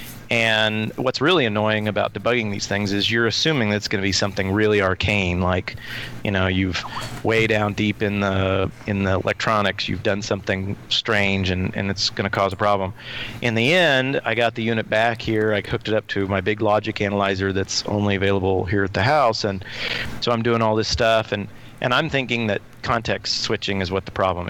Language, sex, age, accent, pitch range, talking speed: English, male, 40-59, American, 100-115 Hz, 210 wpm